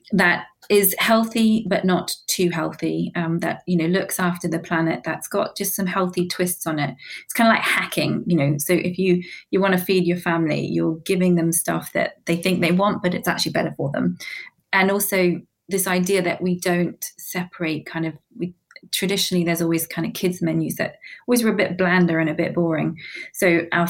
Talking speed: 210 wpm